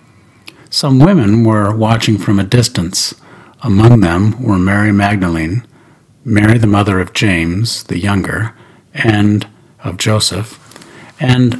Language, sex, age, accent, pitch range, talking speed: English, male, 60-79, American, 100-135 Hz, 120 wpm